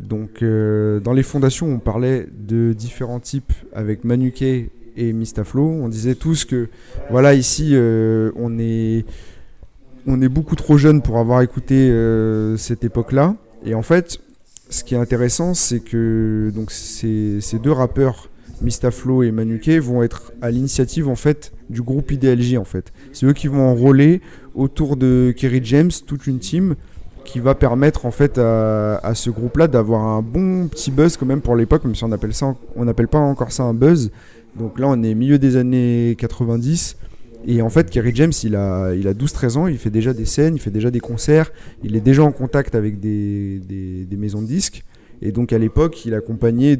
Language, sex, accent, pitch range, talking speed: French, male, French, 110-135 Hz, 190 wpm